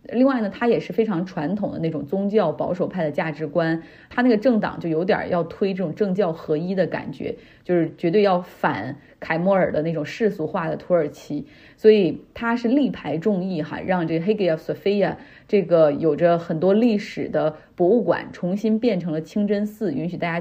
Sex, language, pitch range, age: female, Chinese, 165-210 Hz, 30-49